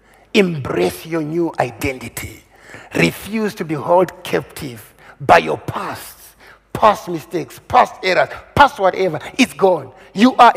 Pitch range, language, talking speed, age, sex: 170-200 Hz, English, 125 wpm, 60-79, male